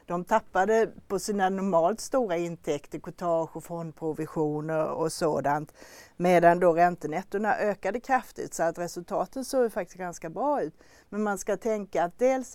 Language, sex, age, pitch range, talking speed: Swedish, female, 40-59, 160-210 Hz, 145 wpm